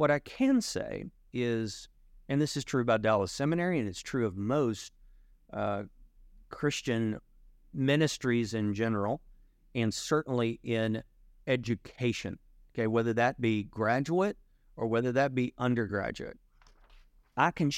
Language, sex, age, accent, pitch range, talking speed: English, male, 40-59, American, 105-135 Hz, 130 wpm